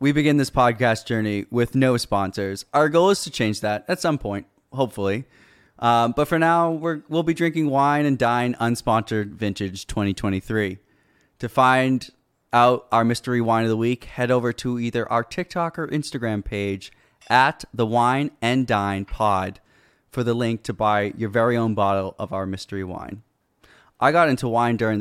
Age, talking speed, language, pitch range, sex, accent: 20-39, 175 wpm, English, 105-130 Hz, male, American